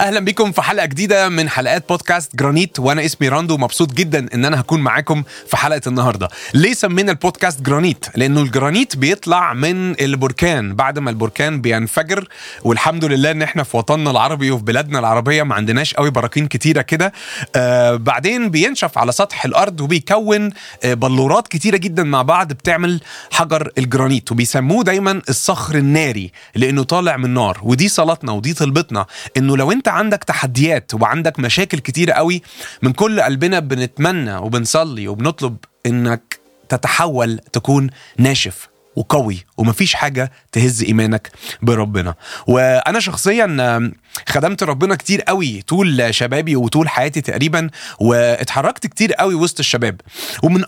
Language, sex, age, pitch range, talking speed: Arabic, male, 30-49, 125-170 Hz, 140 wpm